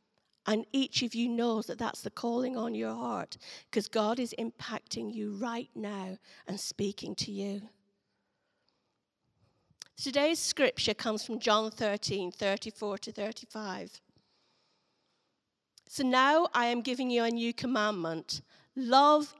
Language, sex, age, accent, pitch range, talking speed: English, female, 50-69, British, 215-290 Hz, 130 wpm